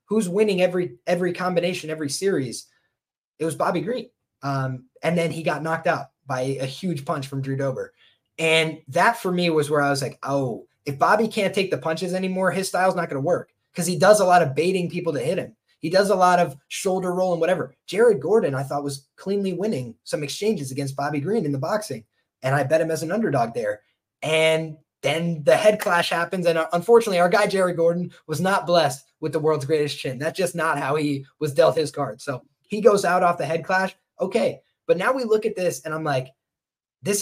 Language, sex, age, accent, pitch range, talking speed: English, male, 20-39, American, 145-185 Hz, 225 wpm